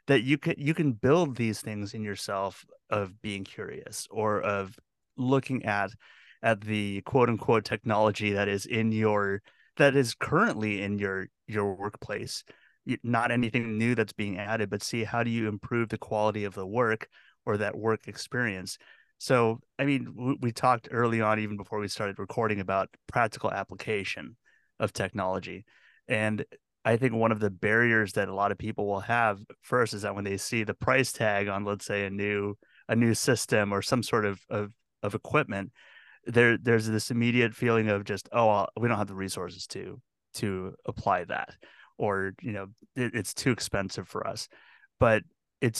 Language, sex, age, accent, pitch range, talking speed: English, male, 30-49, American, 100-120 Hz, 180 wpm